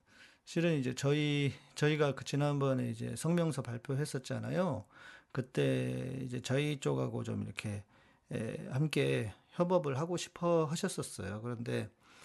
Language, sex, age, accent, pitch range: Korean, male, 40-59, native, 125-160 Hz